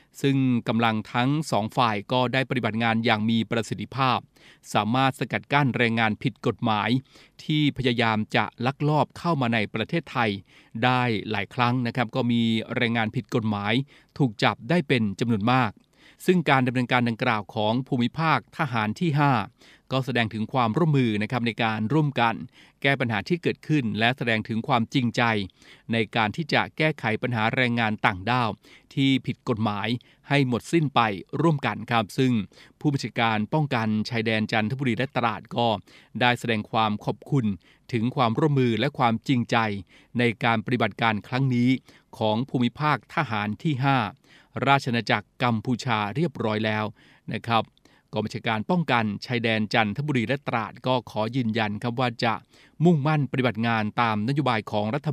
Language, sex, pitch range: Thai, male, 110-130 Hz